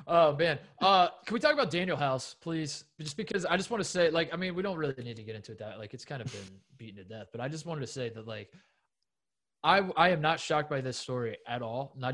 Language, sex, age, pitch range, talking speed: English, male, 20-39, 130-170 Hz, 275 wpm